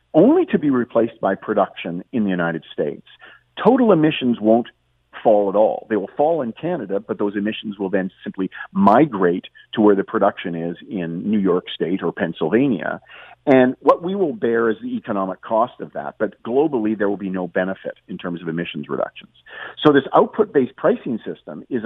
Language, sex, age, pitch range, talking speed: English, male, 50-69, 95-130 Hz, 185 wpm